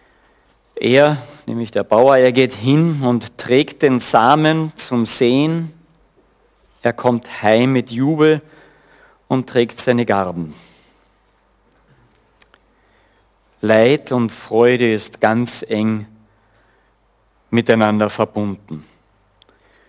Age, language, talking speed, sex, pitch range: 50-69, German, 90 wpm, male, 115-145 Hz